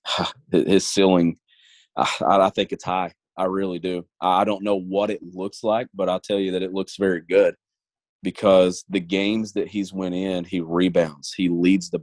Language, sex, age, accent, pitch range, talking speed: English, male, 30-49, American, 90-105 Hz, 185 wpm